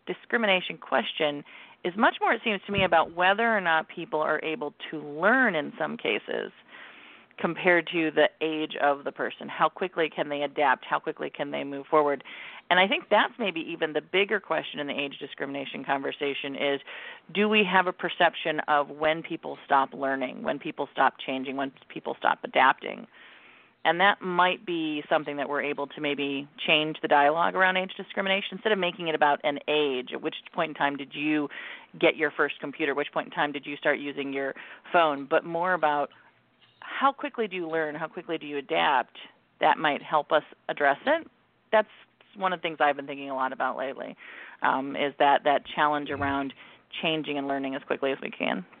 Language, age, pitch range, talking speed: English, 40-59, 145-180 Hz, 200 wpm